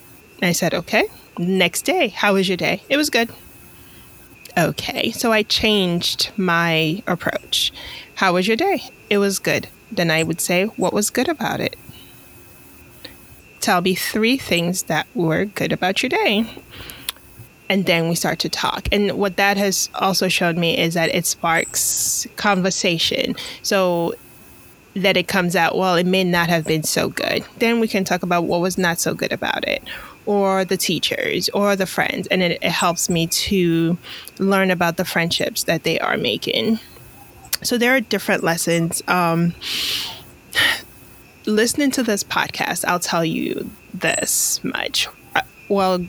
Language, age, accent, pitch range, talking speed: English, 20-39, American, 170-200 Hz, 160 wpm